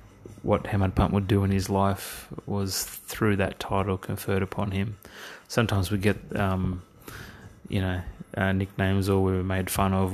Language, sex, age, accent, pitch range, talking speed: English, male, 30-49, Australian, 95-100 Hz, 165 wpm